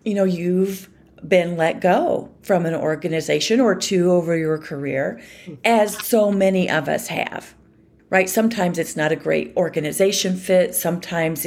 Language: English